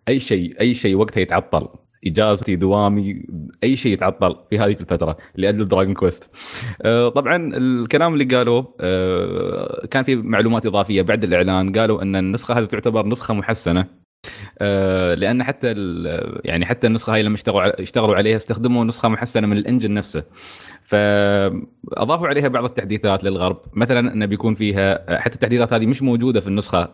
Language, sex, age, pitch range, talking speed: Arabic, male, 20-39, 95-120 Hz, 145 wpm